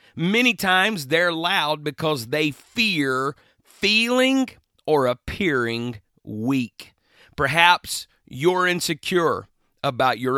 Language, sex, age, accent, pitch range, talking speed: English, male, 40-59, American, 130-185 Hz, 95 wpm